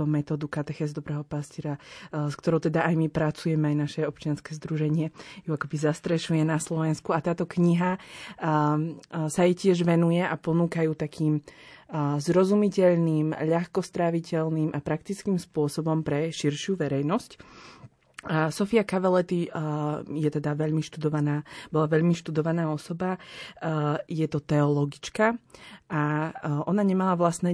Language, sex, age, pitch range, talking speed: Slovak, female, 20-39, 150-170 Hz, 115 wpm